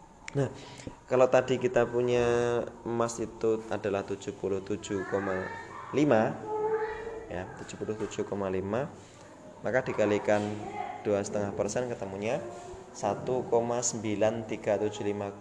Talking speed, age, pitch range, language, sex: 65 wpm, 20-39, 100-120 Hz, Indonesian, male